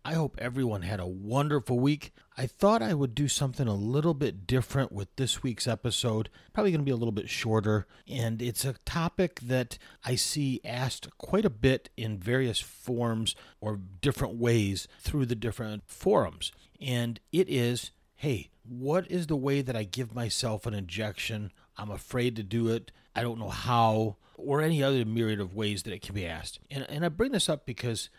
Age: 40-59